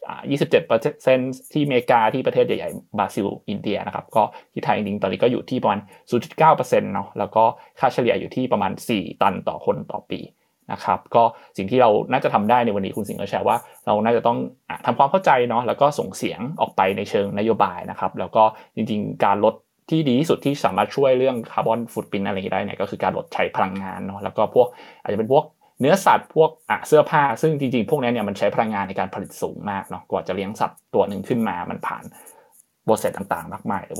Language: Thai